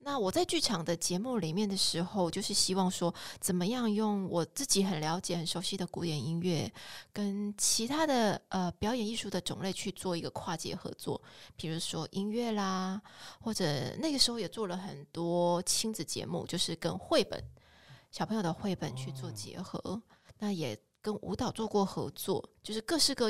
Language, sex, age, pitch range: Chinese, female, 20-39, 170-225 Hz